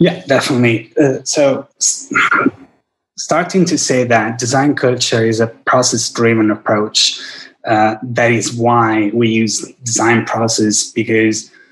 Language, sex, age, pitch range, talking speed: English, male, 20-39, 115-130 Hz, 120 wpm